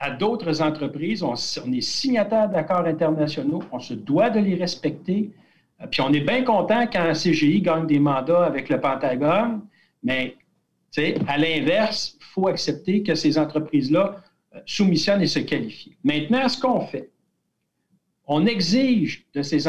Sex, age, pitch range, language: male, 60-79, 150-210 Hz, French